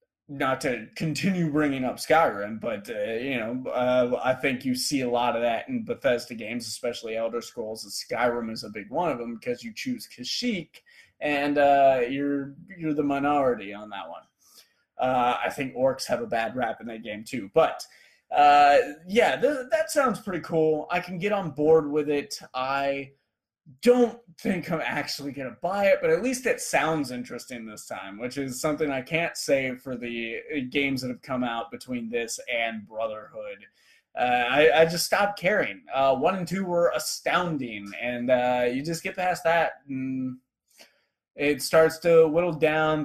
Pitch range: 125-175 Hz